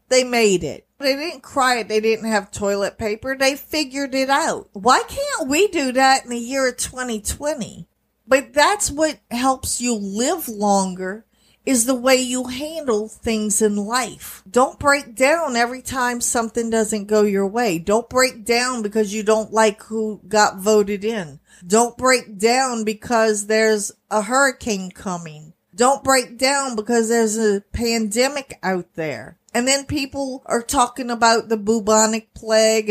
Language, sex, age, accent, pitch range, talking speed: English, female, 50-69, American, 215-265 Hz, 160 wpm